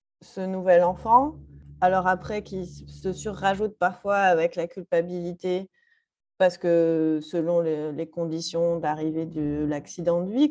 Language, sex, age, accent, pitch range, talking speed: French, female, 30-49, French, 170-225 Hz, 130 wpm